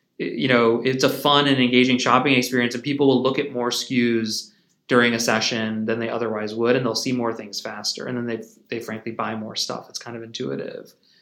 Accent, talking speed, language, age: American, 220 wpm, English, 20-39